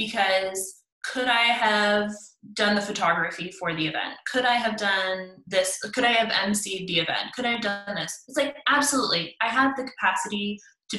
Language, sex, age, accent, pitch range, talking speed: English, female, 20-39, American, 175-220 Hz, 185 wpm